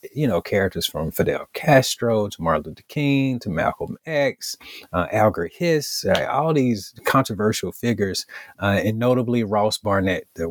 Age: 30-49